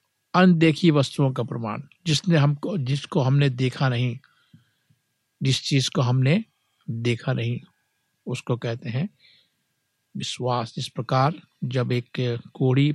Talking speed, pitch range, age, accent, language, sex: 115 wpm, 125-155 Hz, 60-79, native, Hindi, male